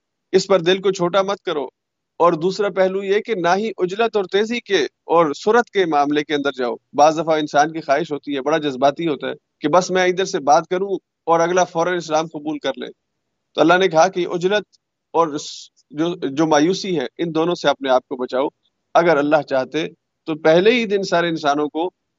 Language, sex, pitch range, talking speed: Urdu, male, 145-185 Hz, 210 wpm